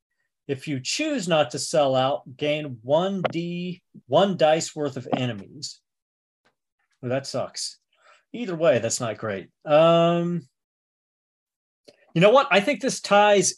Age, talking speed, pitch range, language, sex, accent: 40-59, 135 wpm, 130-180 Hz, English, male, American